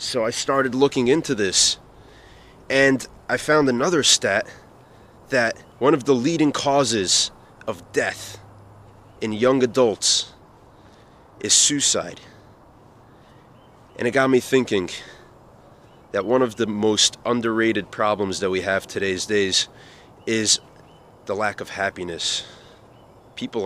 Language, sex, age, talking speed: English, male, 30-49, 120 wpm